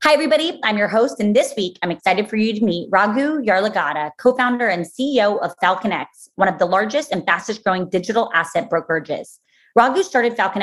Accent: American